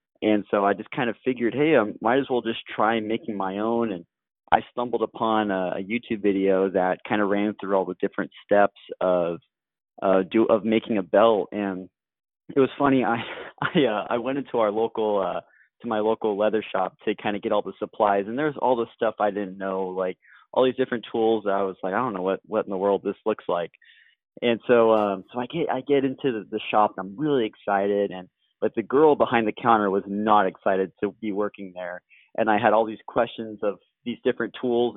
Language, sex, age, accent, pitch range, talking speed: English, male, 20-39, American, 100-115 Hz, 230 wpm